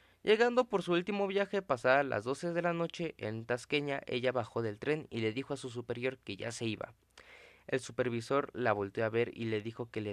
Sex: male